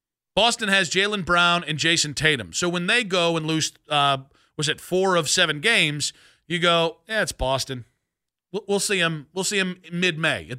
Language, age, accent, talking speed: English, 40-59, American, 195 wpm